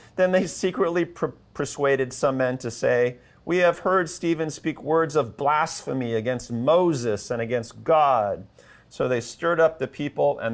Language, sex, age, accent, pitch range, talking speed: English, male, 40-59, American, 115-140 Hz, 160 wpm